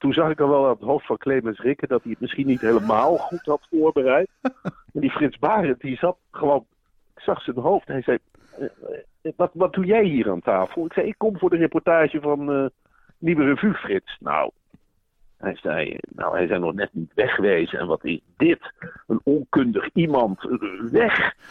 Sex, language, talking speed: male, Dutch, 200 wpm